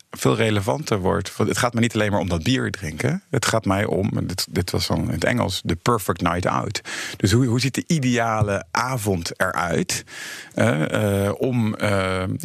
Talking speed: 200 wpm